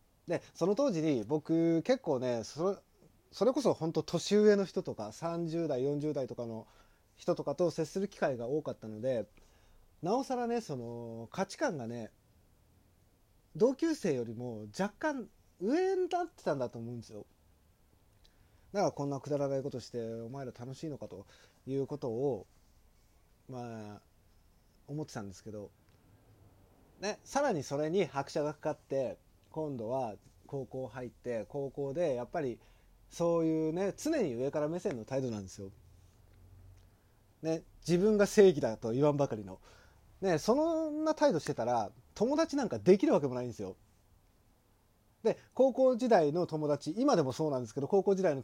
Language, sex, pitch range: Japanese, male, 105-170 Hz